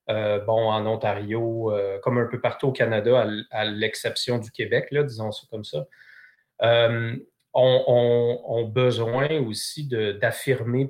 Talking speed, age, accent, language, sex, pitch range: 155 wpm, 30-49, Canadian, English, male, 110-125 Hz